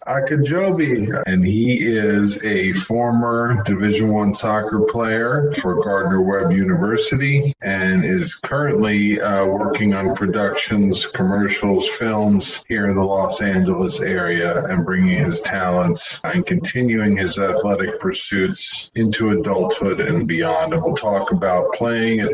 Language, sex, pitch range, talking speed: English, male, 100-165 Hz, 130 wpm